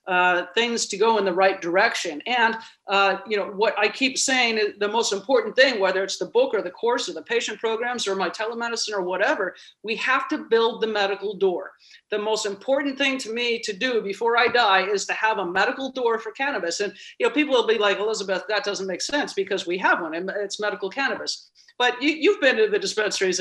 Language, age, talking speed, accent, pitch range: English, 50-69, 230 wpm, American, 195-250 Hz